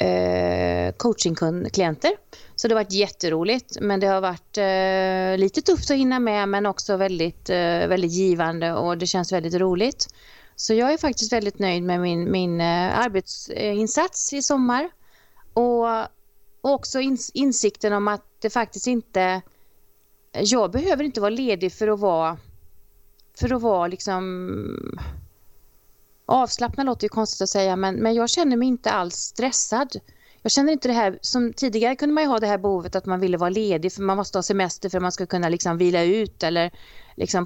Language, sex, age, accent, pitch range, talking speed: Swedish, female, 30-49, native, 180-240 Hz, 170 wpm